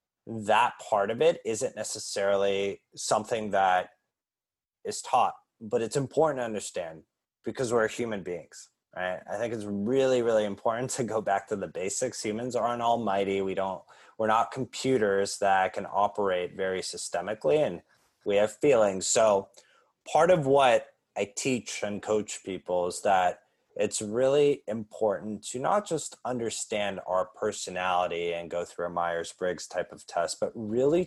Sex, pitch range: male, 100-140 Hz